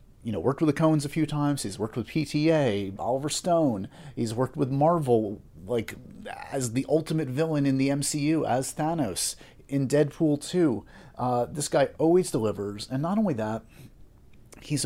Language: English